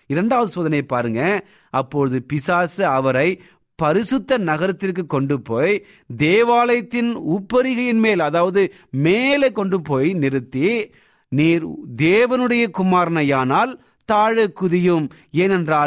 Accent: native